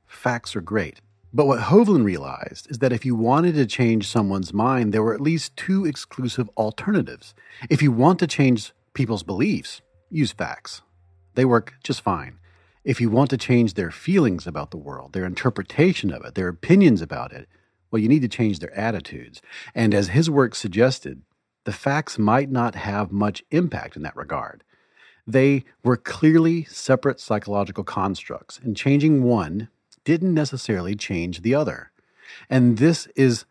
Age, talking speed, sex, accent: 40-59, 165 wpm, male, American